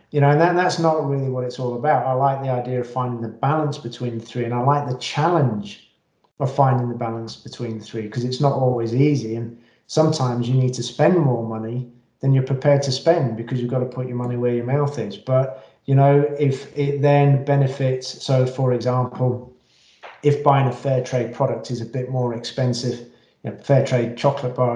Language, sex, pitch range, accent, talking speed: English, male, 120-140 Hz, British, 220 wpm